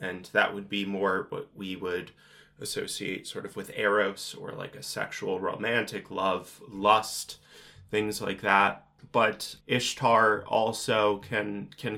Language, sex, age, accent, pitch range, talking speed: English, male, 20-39, American, 100-110 Hz, 140 wpm